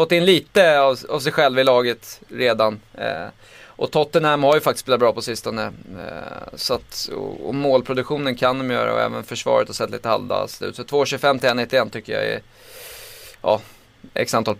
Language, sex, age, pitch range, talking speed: Swedish, male, 20-39, 115-150 Hz, 195 wpm